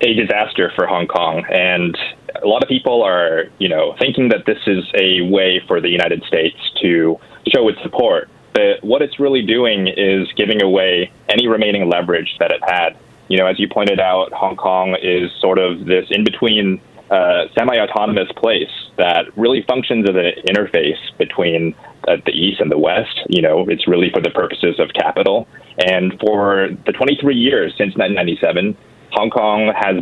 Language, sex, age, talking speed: English, male, 20-39, 175 wpm